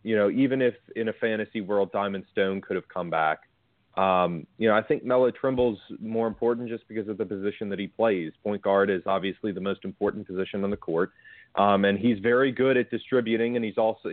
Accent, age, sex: American, 30-49, male